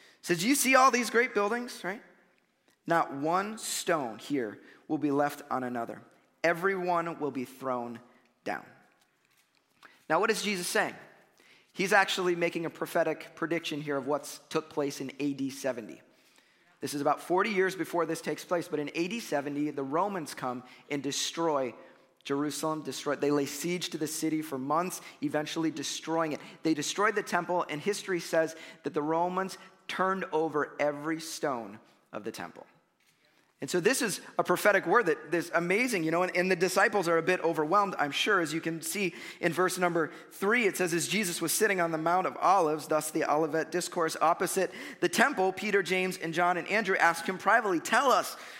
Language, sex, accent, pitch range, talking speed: English, male, American, 150-185 Hz, 185 wpm